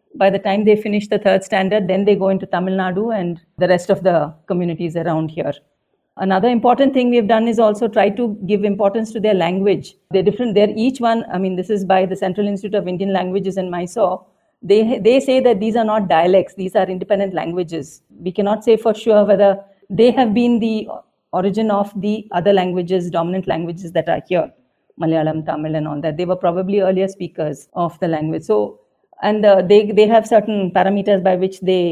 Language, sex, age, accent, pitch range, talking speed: English, female, 50-69, Indian, 180-210 Hz, 205 wpm